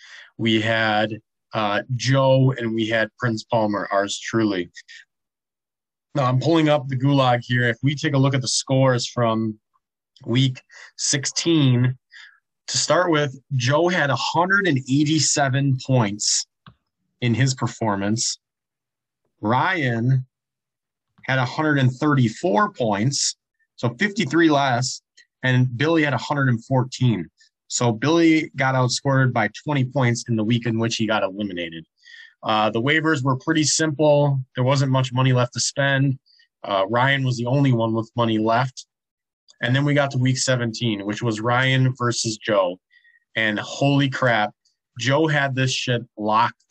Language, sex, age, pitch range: English, male, 30-49, 120-145 Hz